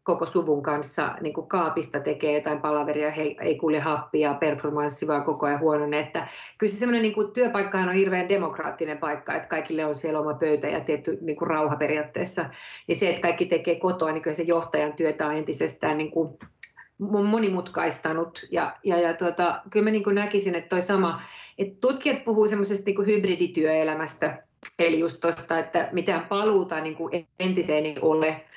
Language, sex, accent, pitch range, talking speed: Finnish, female, native, 155-190 Hz, 170 wpm